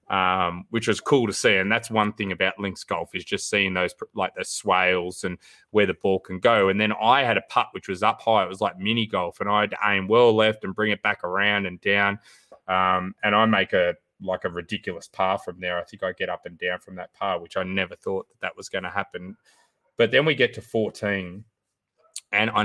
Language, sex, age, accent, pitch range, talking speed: English, male, 20-39, Australian, 90-110 Hz, 250 wpm